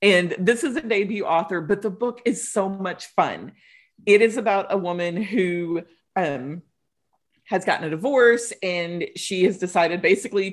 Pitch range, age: 170-205 Hz, 40-59